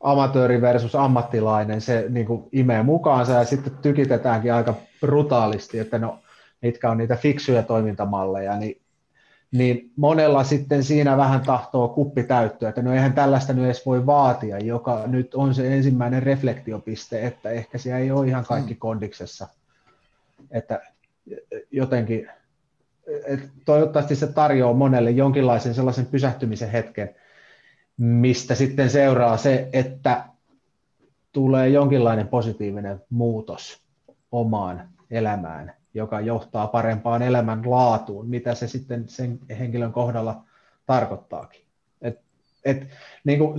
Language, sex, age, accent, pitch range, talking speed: Finnish, male, 30-49, native, 115-135 Hz, 115 wpm